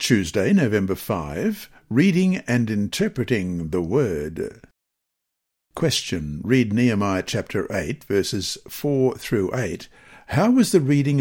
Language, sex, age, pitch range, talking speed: English, male, 60-79, 120-160 Hz, 110 wpm